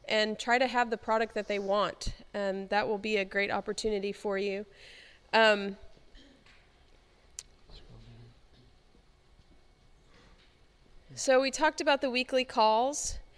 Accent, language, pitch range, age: American, English, 195-230 Hz, 30-49